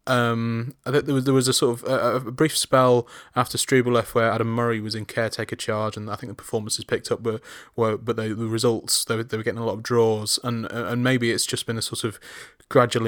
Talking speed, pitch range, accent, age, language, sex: 235 wpm, 110-125 Hz, British, 20-39, English, male